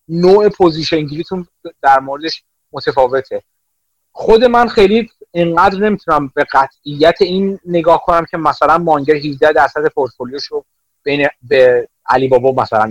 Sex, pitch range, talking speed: male, 150-210 Hz, 120 wpm